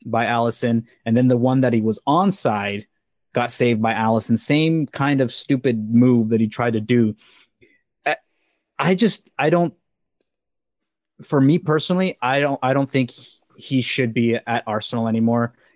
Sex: male